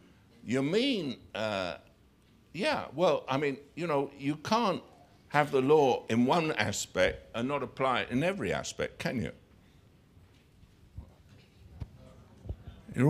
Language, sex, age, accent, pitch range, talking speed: English, male, 60-79, British, 105-175 Hz, 125 wpm